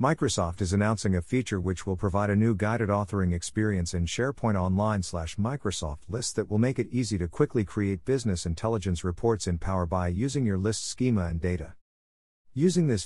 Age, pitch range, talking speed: 50-69, 85-115 Hz, 180 wpm